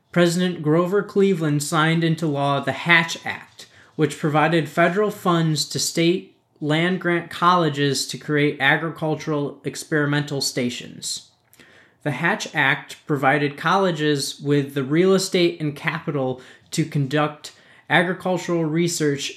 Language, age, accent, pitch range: English, 20-39, American, 140-165 Hz